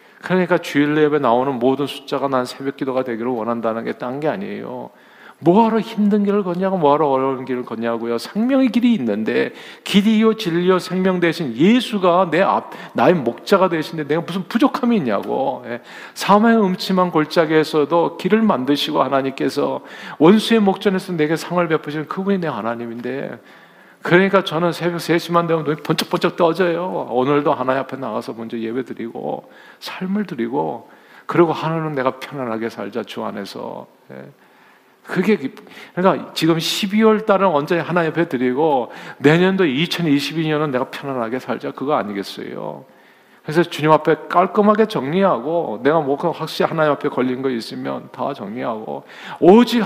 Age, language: 40-59, Korean